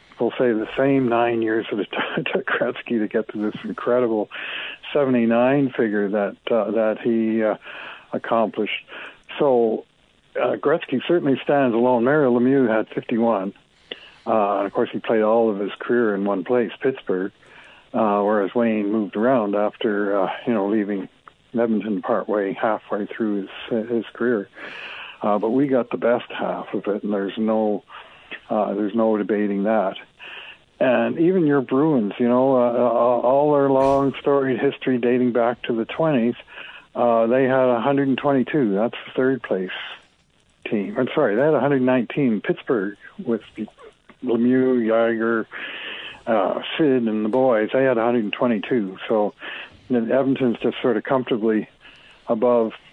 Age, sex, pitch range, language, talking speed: 60-79, male, 110-130 Hz, English, 145 wpm